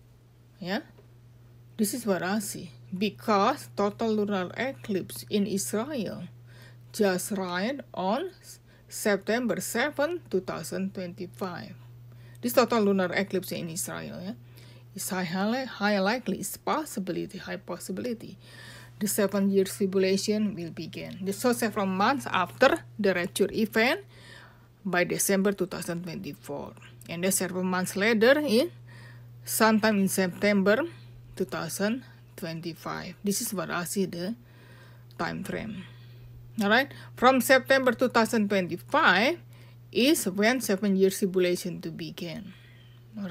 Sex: female